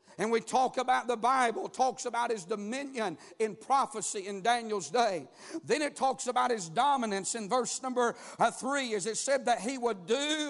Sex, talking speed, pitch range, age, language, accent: male, 185 wpm, 220-275 Hz, 50-69, English, American